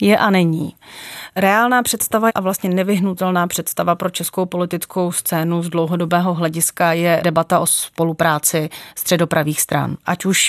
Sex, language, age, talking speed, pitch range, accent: female, Czech, 30-49, 135 wpm, 165-185 Hz, native